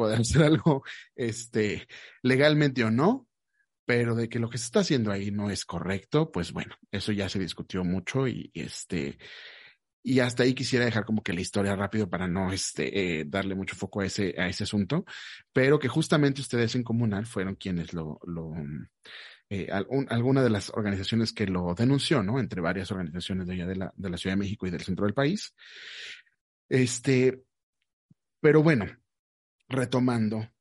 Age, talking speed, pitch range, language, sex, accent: 30-49, 180 wpm, 95-120 Hz, Spanish, male, Mexican